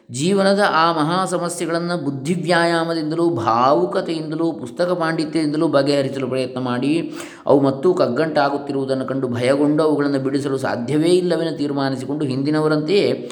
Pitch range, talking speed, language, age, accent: 115-165 Hz, 100 wpm, Kannada, 20-39, native